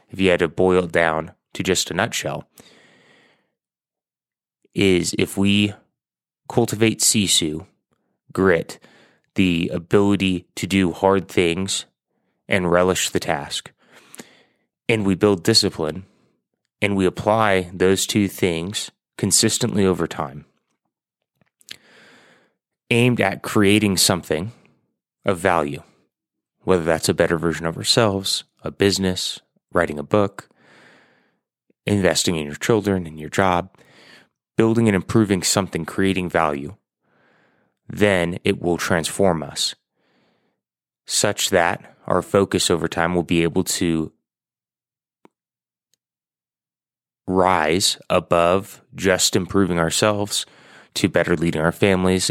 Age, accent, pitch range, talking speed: 30-49, American, 85-100 Hz, 110 wpm